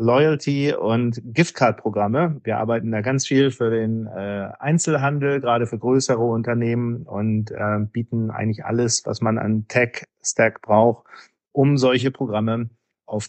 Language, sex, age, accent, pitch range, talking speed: German, male, 40-59, German, 115-140 Hz, 135 wpm